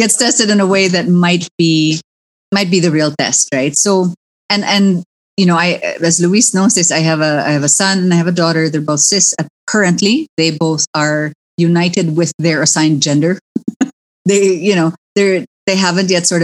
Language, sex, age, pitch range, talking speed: English, female, 30-49, 155-200 Hz, 205 wpm